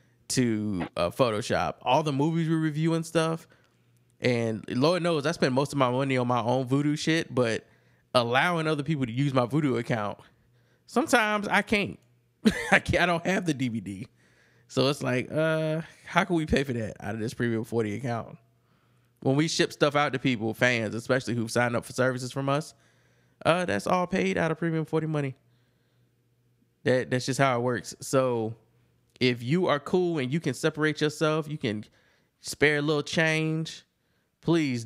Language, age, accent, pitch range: English, 20-39, American, 120-150 Hz